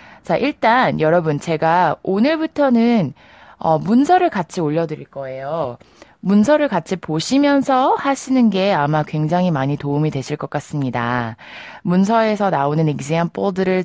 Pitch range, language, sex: 155-230 Hz, Korean, female